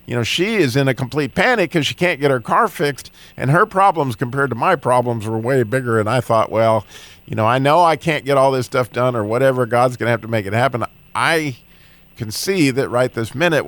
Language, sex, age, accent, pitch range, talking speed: English, male, 50-69, American, 115-155 Hz, 245 wpm